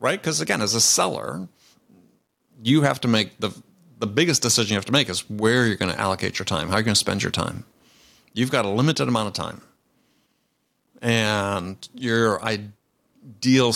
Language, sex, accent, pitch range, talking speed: English, male, American, 100-125 Hz, 190 wpm